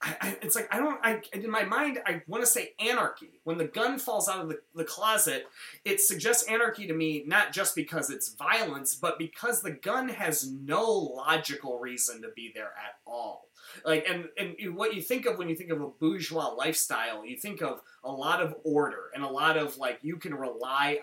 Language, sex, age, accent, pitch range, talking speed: English, male, 30-49, American, 145-185 Hz, 215 wpm